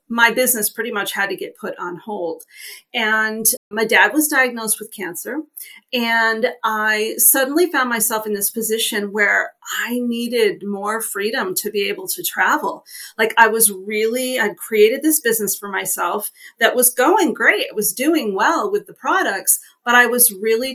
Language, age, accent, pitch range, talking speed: English, 40-59, American, 220-300 Hz, 175 wpm